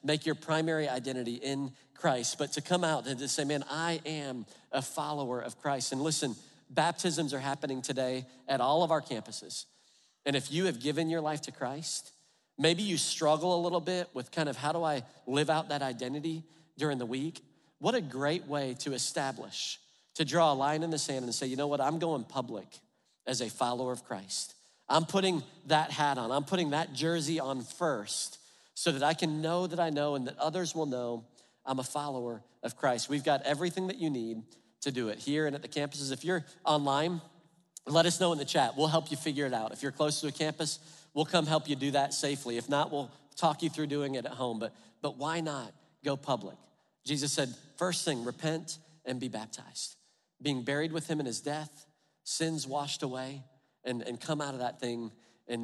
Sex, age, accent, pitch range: male, 40-59, American, 130-160 Hz